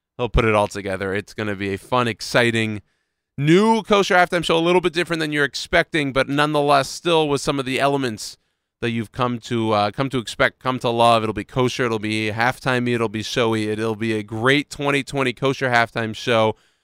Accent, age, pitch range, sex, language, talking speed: American, 30-49, 115-150 Hz, male, English, 210 wpm